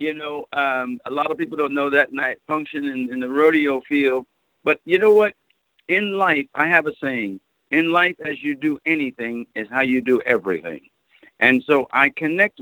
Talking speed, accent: 200 wpm, American